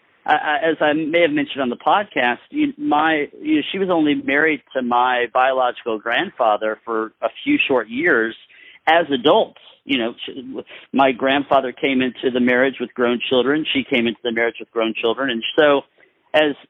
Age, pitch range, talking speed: 50-69, 120-160 Hz, 180 wpm